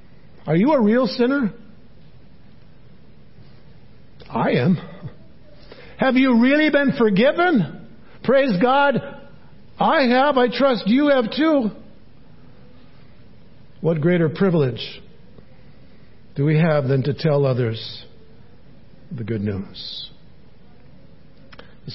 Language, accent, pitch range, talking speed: English, American, 150-230 Hz, 95 wpm